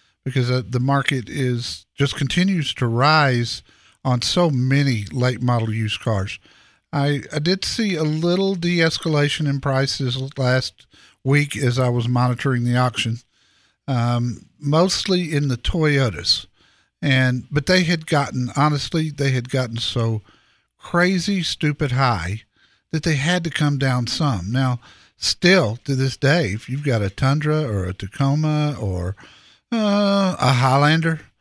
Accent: American